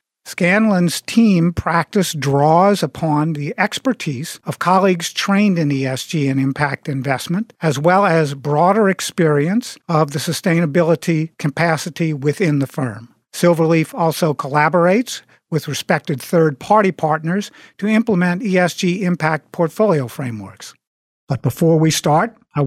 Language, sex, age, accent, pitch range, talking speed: English, male, 50-69, American, 140-175 Hz, 120 wpm